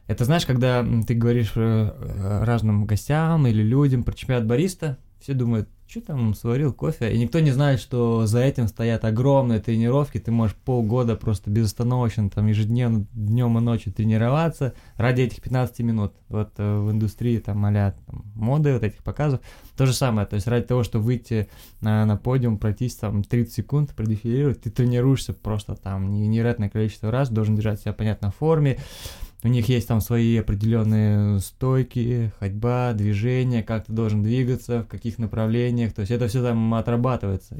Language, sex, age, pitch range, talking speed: Russian, male, 20-39, 105-125 Hz, 165 wpm